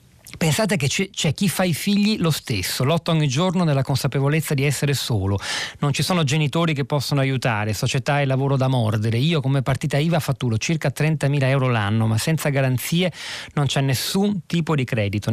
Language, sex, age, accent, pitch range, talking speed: Italian, male, 40-59, native, 125-155 Hz, 190 wpm